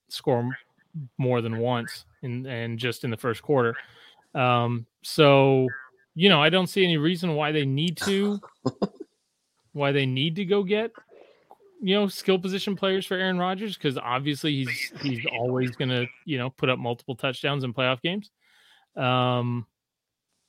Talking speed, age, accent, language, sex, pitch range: 160 wpm, 30-49, American, English, male, 120-160 Hz